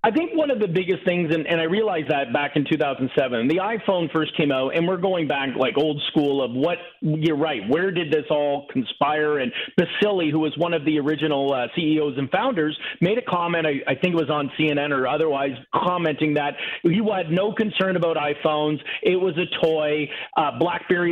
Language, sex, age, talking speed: English, male, 40-59, 210 wpm